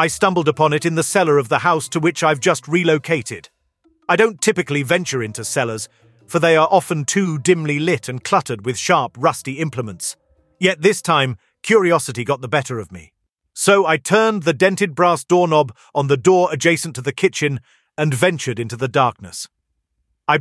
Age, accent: 40-59, British